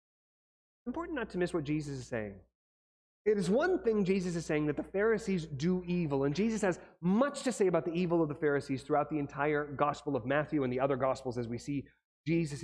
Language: English